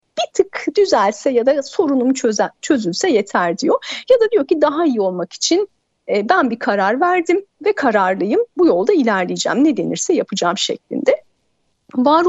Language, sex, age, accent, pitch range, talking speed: Turkish, female, 40-59, native, 230-305 Hz, 160 wpm